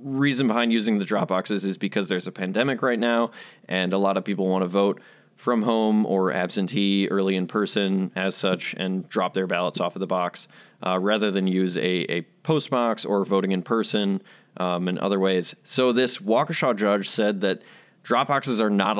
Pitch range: 95-120 Hz